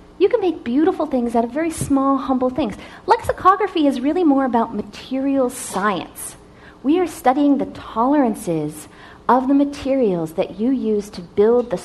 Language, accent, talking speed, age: English, American, 160 wpm, 40-59